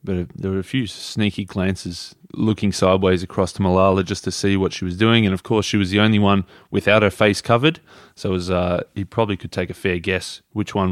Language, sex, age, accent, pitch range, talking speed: English, male, 20-39, Australian, 95-110 Hz, 240 wpm